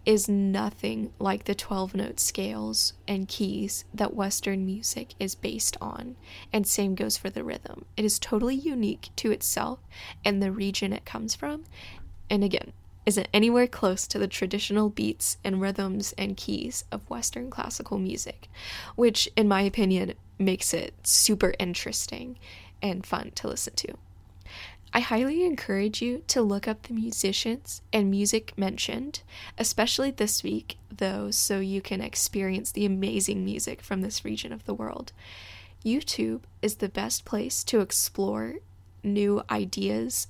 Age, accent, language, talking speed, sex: 10-29, American, English, 150 wpm, female